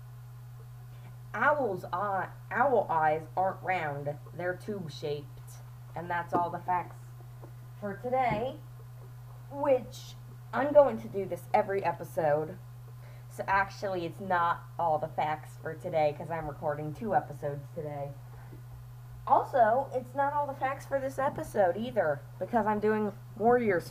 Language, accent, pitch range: English, American, 120-170 Hz